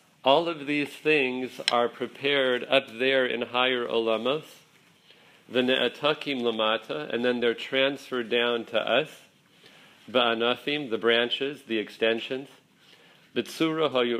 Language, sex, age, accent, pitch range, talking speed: English, male, 50-69, American, 115-135 Hz, 115 wpm